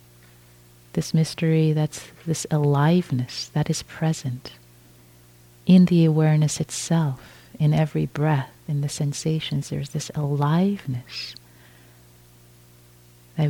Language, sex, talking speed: English, female, 100 wpm